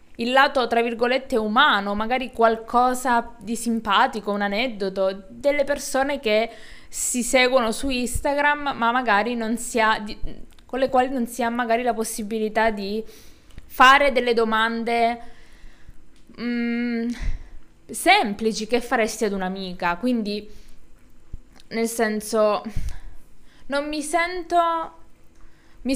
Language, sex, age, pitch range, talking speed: Italian, female, 20-39, 215-265 Hz, 110 wpm